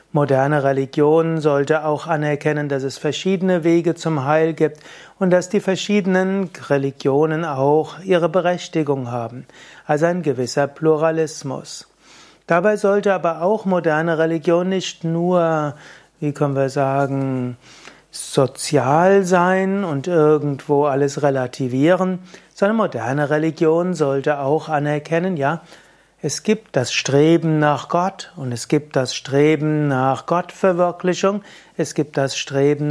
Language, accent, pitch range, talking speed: German, German, 140-175 Hz, 120 wpm